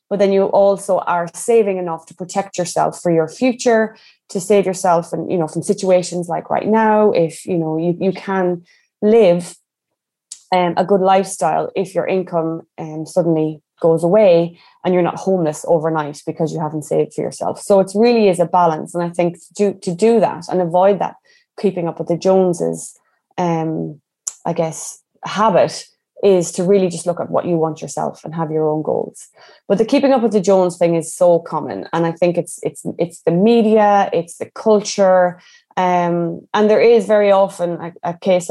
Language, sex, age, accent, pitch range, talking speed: English, female, 20-39, Irish, 170-205 Hz, 195 wpm